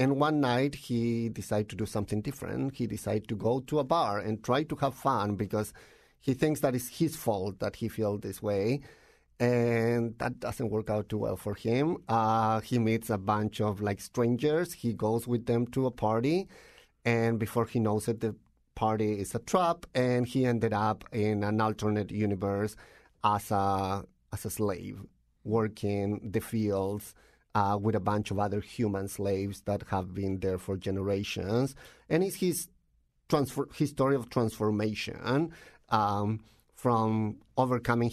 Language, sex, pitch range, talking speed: English, male, 105-125 Hz, 170 wpm